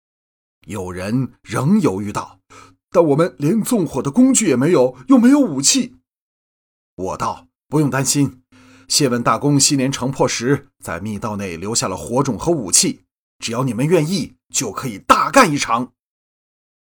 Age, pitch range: 30-49, 120-175 Hz